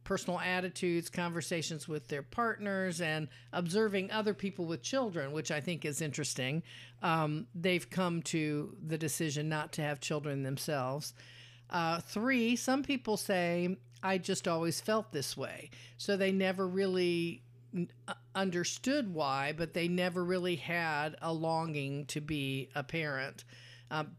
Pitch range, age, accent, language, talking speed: 145-195 Hz, 50-69, American, English, 140 wpm